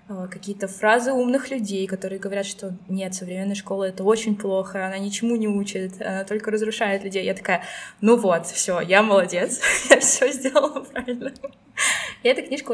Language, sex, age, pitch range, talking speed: Russian, female, 20-39, 195-230 Hz, 170 wpm